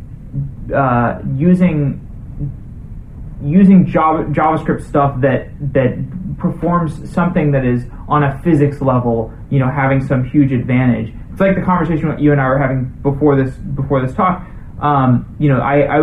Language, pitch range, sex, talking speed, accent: English, 125-155 Hz, male, 155 wpm, American